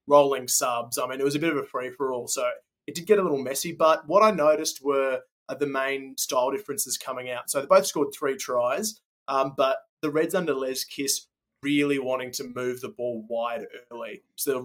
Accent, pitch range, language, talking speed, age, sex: Australian, 130-150 Hz, English, 215 wpm, 20-39, male